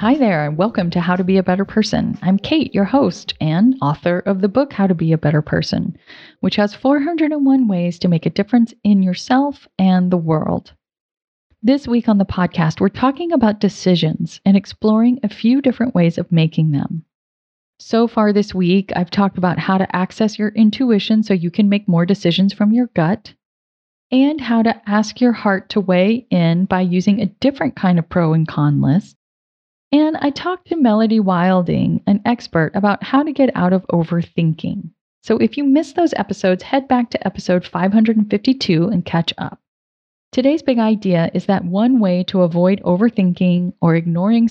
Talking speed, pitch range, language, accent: 185 wpm, 180-230 Hz, English, American